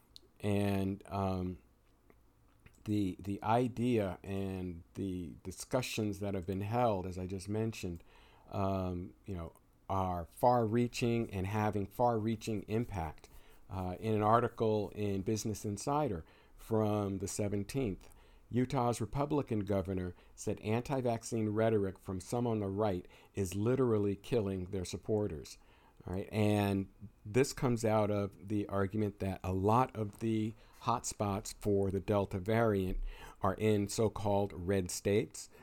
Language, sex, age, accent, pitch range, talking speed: English, male, 50-69, American, 95-110 Hz, 125 wpm